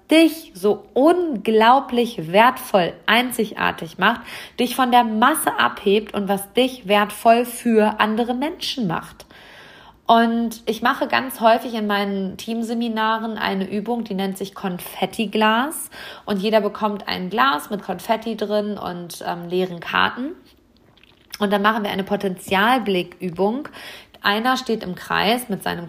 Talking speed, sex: 130 wpm, female